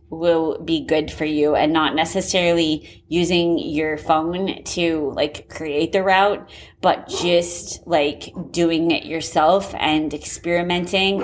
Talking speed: 130 wpm